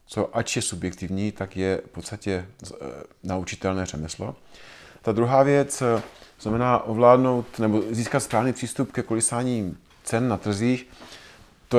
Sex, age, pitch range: male, 40-59, 95-125 Hz